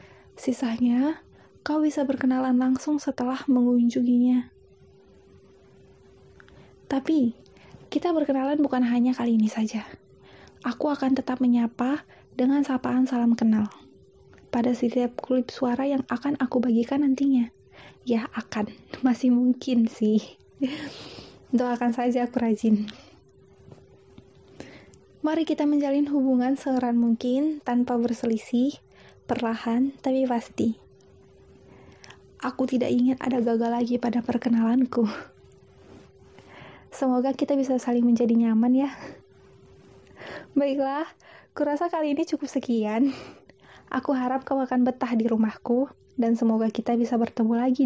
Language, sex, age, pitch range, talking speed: Indonesian, female, 20-39, 230-270 Hz, 110 wpm